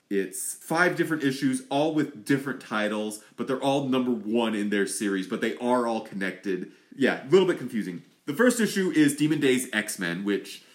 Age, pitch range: 30-49, 105-155 Hz